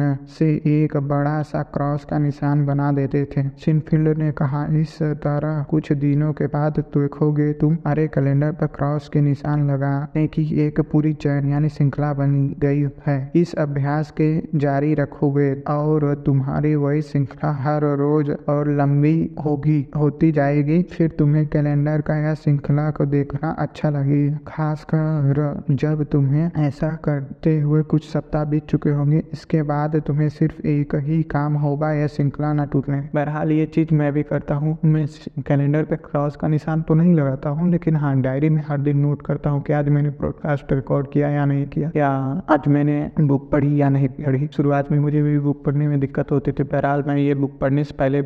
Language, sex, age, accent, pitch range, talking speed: Hindi, male, 20-39, native, 145-155 Hz, 135 wpm